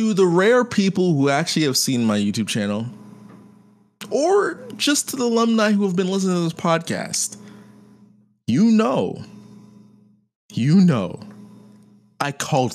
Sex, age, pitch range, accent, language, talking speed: male, 20-39, 115-175 Hz, American, English, 135 wpm